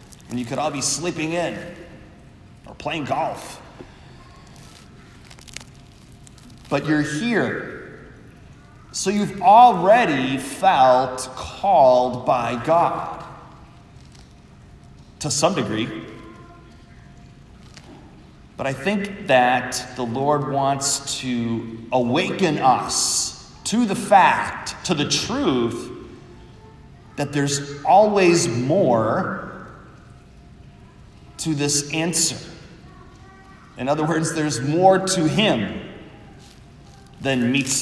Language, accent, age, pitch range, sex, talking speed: English, American, 30-49, 130-175 Hz, male, 85 wpm